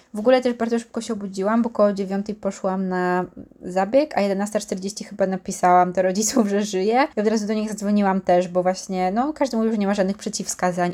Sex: female